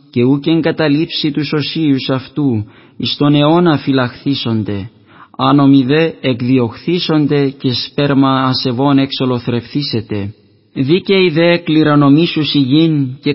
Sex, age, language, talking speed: male, 20-39, Greek, 100 wpm